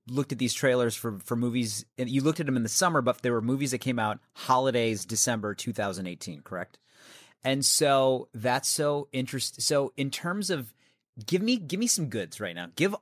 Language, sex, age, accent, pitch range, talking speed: English, male, 30-49, American, 115-145 Hz, 205 wpm